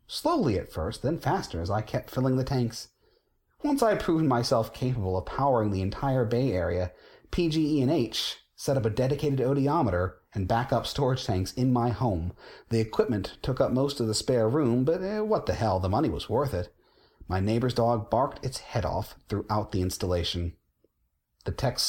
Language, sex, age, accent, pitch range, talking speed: English, male, 30-49, American, 100-130 Hz, 190 wpm